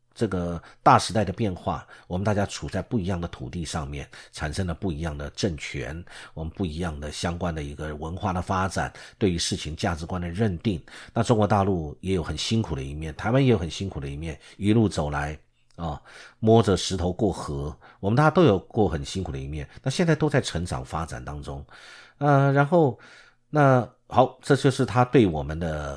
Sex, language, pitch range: male, Chinese, 85-125 Hz